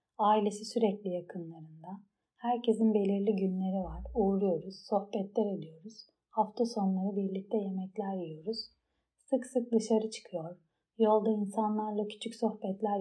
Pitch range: 190-230 Hz